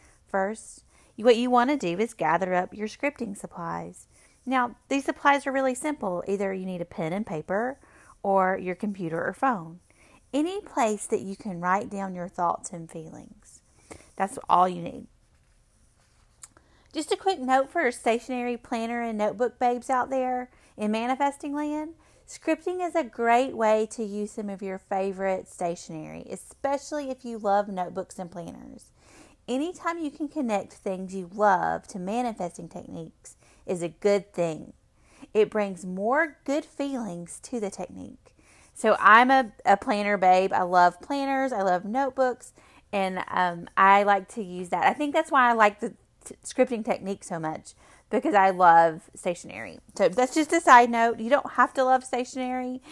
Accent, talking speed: American, 170 wpm